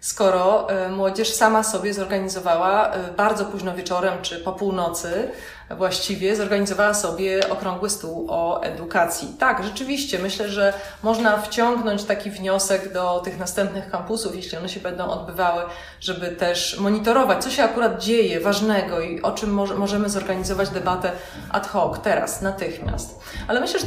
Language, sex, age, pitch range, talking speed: Polish, female, 30-49, 185-220 Hz, 140 wpm